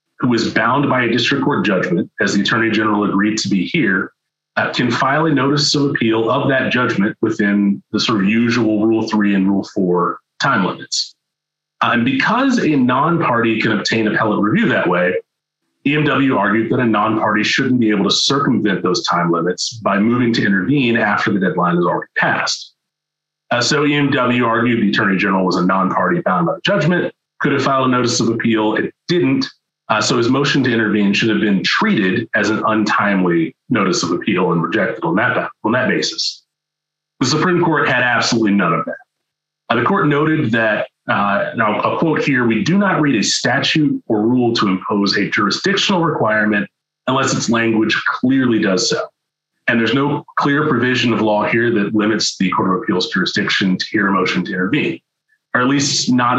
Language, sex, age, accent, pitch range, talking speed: English, male, 30-49, American, 105-140 Hz, 190 wpm